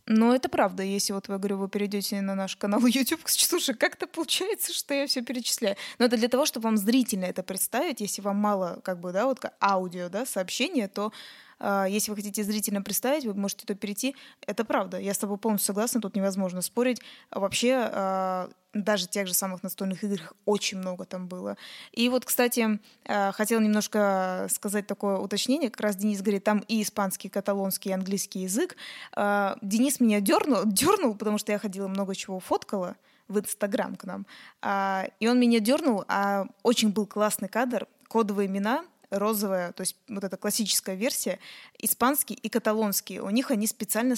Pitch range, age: 195-235 Hz, 20-39